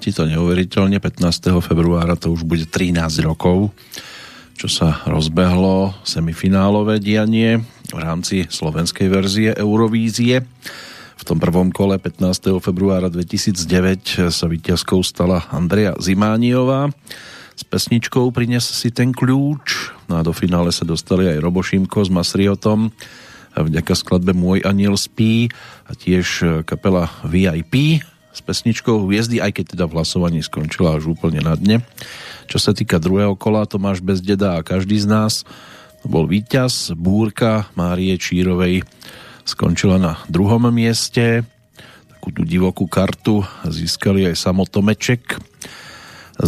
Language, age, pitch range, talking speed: Slovak, 40-59, 90-110 Hz, 130 wpm